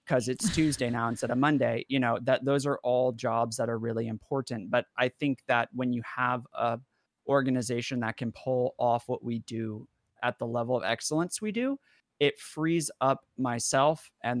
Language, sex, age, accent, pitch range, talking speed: English, male, 30-49, American, 120-140 Hz, 190 wpm